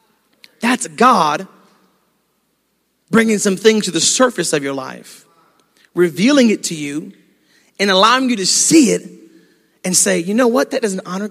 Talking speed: 155 wpm